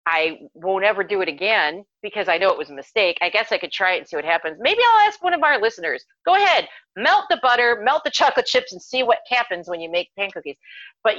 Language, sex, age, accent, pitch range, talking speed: English, female, 40-59, American, 155-230 Hz, 265 wpm